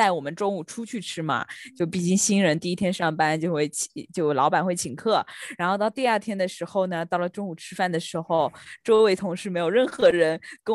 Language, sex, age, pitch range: Chinese, female, 20-39, 165-215 Hz